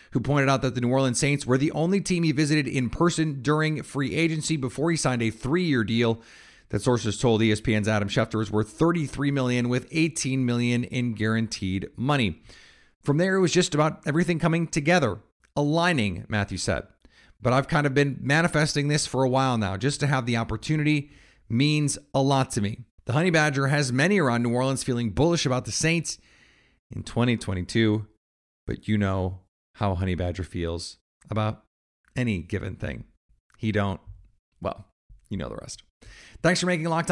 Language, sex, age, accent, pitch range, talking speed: English, male, 30-49, American, 105-150 Hz, 180 wpm